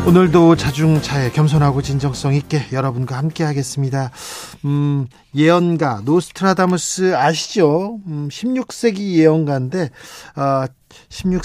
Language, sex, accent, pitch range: Korean, male, native, 135-175 Hz